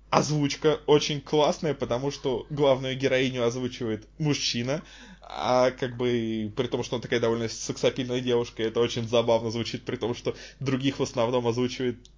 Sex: male